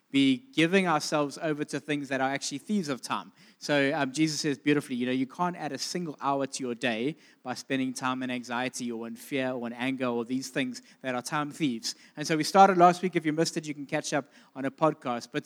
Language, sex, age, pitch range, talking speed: English, male, 20-39, 140-180 Hz, 250 wpm